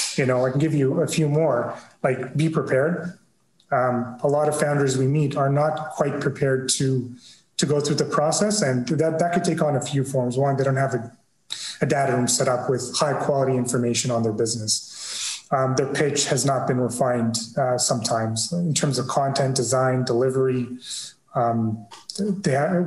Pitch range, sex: 130-160 Hz, male